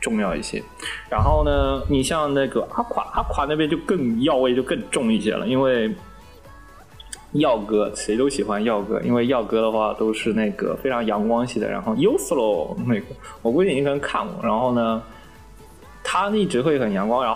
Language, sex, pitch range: Chinese, male, 110-190 Hz